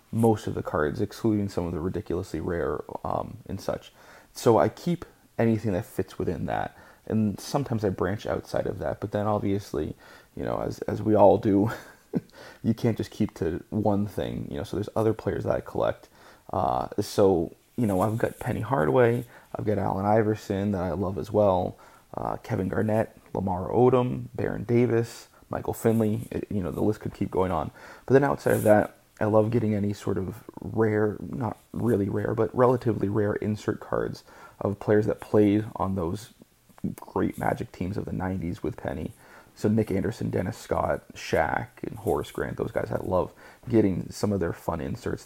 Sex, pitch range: male, 100-115 Hz